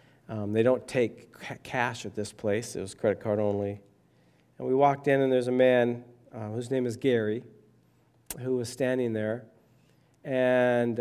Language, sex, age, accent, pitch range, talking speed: English, male, 40-59, American, 115-145 Hz, 170 wpm